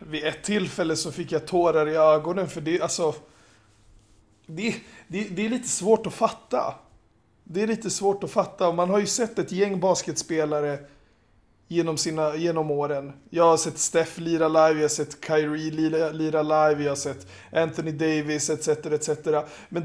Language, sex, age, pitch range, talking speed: Swedish, male, 20-39, 155-180 Hz, 180 wpm